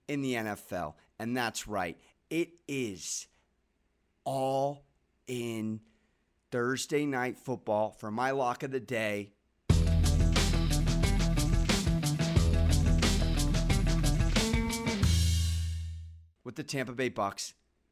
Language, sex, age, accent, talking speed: English, male, 40-59, American, 80 wpm